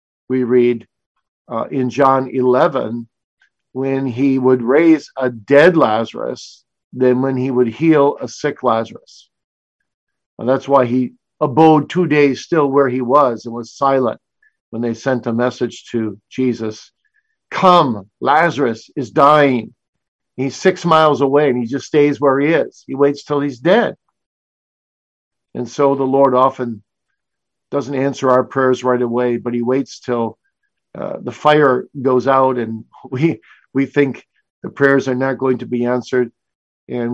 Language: English